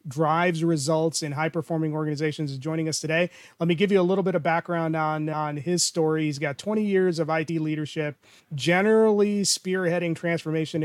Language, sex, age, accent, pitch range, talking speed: English, male, 30-49, American, 155-180 Hz, 175 wpm